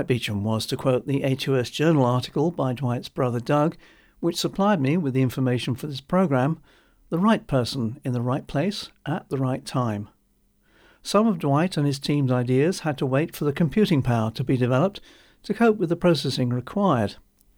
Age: 60-79